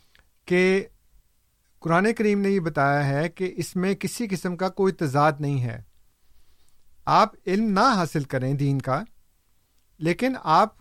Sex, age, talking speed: male, 50-69, 145 wpm